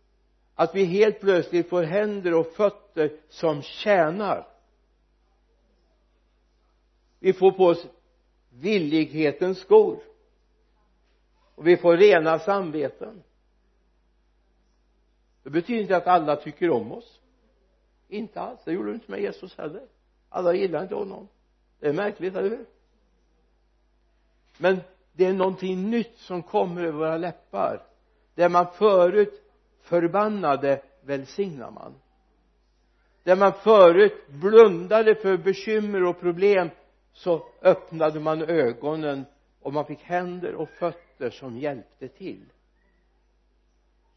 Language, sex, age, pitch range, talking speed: Swedish, male, 60-79, 140-195 Hz, 110 wpm